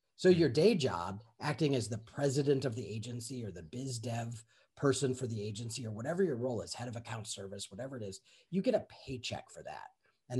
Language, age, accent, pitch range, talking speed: English, 40-59, American, 110-145 Hz, 220 wpm